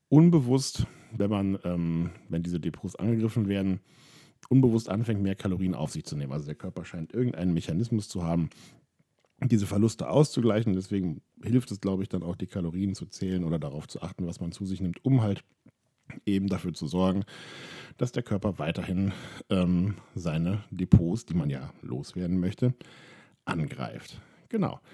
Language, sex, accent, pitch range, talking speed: German, male, German, 90-115 Hz, 165 wpm